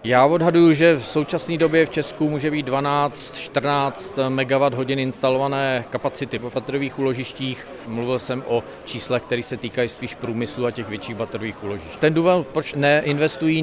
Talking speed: 155 wpm